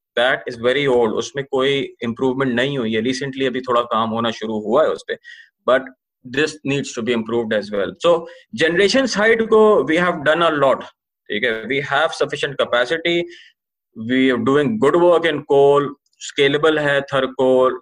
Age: 30-49